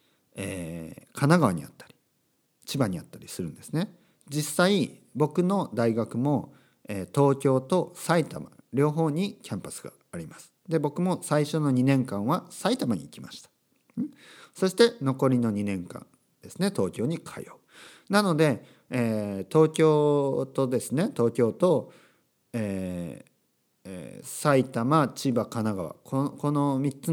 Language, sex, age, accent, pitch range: Japanese, male, 50-69, native, 115-165 Hz